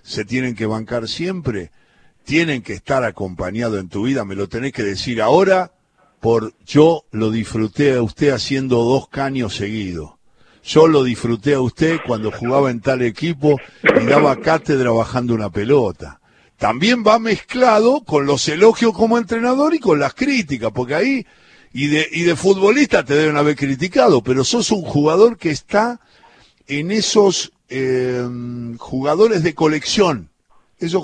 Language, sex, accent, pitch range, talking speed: Spanish, male, Argentinian, 125-195 Hz, 155 wpm